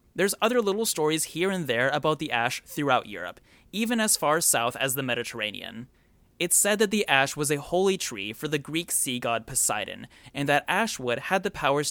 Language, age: English, 30-49